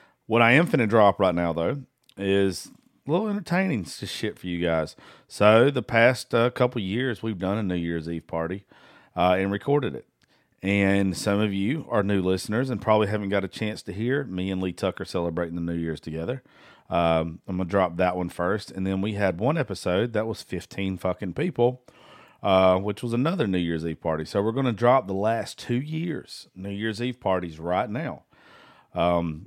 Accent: American